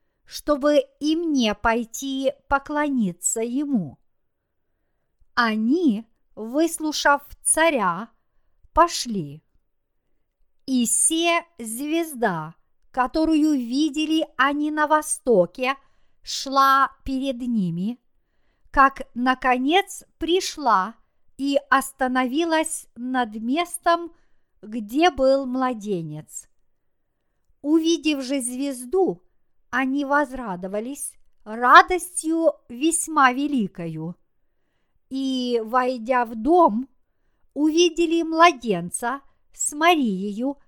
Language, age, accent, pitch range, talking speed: Russian, 50-69, native, 235-305 Hz, 70 wpm